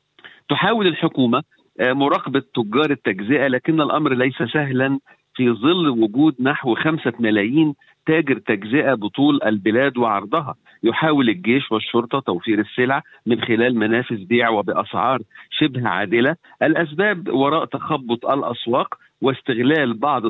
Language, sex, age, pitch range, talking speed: Arabic, male, 50-69, 115-145 Hz, 110 wpm